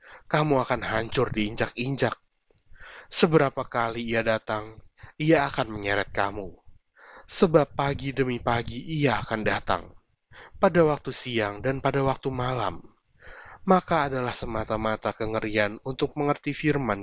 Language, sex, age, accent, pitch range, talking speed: Indonesian, male, 20-39, native, 110-145 Hz, 115 wpm